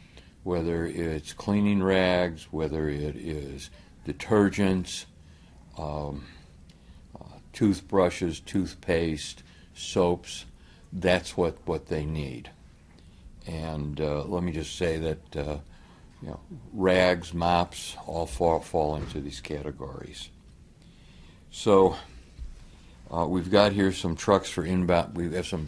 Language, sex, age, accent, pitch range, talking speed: English, male, 60-79, American, 75-90 Hz, 110 wpm